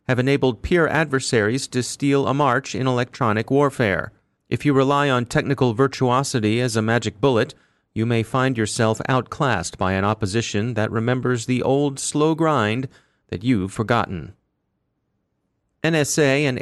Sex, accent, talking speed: male, American, 145 wpm